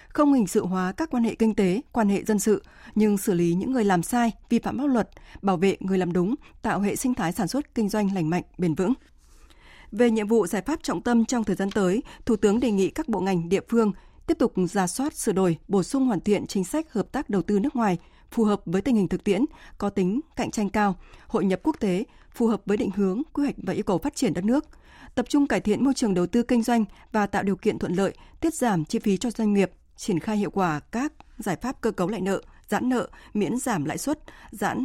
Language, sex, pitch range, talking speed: Vietnamese, female, 190-245 Hz, 260 wpm